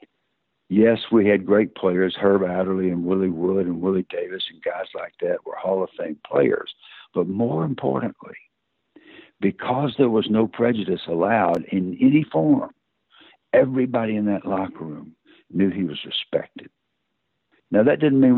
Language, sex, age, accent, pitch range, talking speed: English, male, 60-79, American, 95-120 Hz, 155 wpm